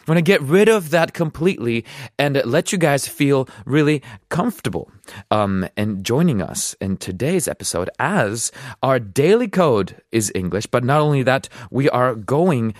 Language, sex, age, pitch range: Korean, male, 30-49, 110-165 Hz